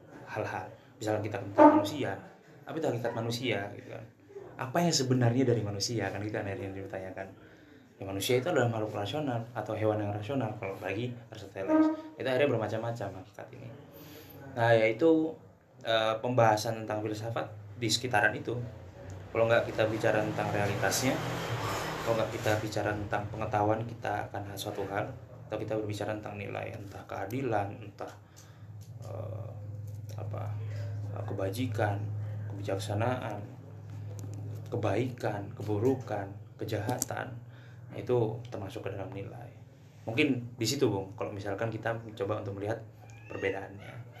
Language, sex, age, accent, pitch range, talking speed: Indonesian, male, 20-39, native, 105-120 Hz, 125 wpm